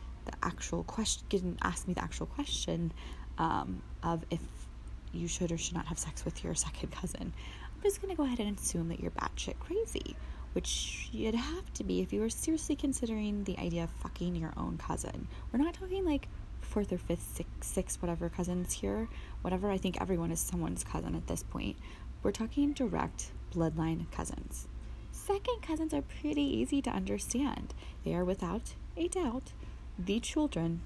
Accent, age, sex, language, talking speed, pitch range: American, 20-39, female, English, 180 wpm, 160-245 Hz